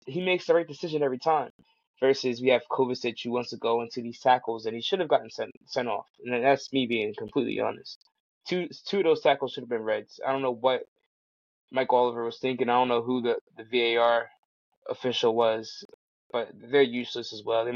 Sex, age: male, 20-39